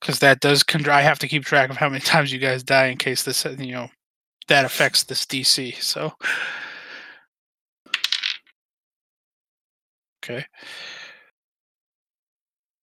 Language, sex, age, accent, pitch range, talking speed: English, male, 20-39, American, 125-140 Hz, 125 wpm